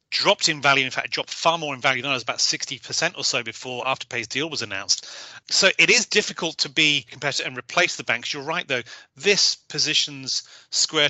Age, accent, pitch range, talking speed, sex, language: 30-49, British, 125-150 Hz, 225 wpm, male, English